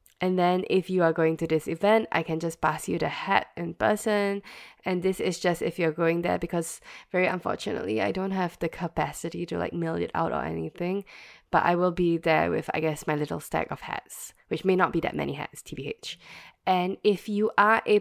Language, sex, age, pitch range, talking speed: English, female, 10-29, 160-195 Hz, 225 wpm